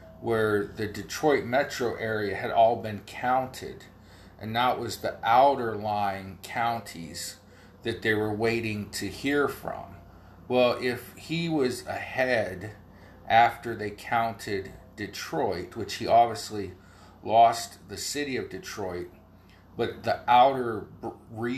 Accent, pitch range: American, 95-115 Hz